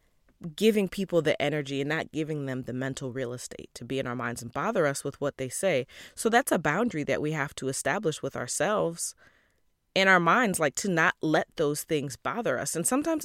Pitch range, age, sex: 140-205 Hz, 20-39, female